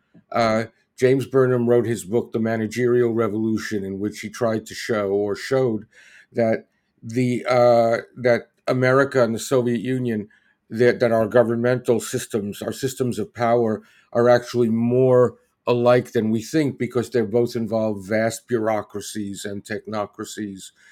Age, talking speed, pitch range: 50-69, 145 wpm, 105-125 Hz